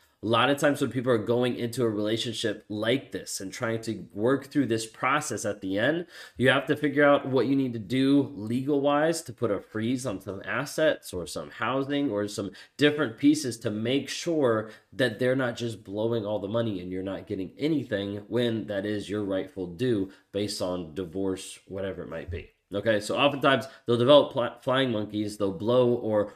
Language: English